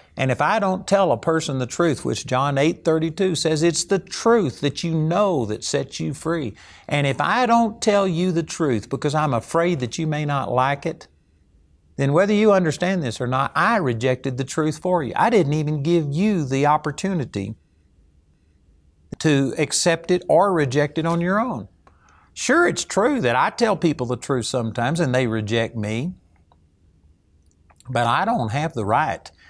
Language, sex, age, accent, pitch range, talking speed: English, male, 50-69, American, 110-175 Hz, 185 wpm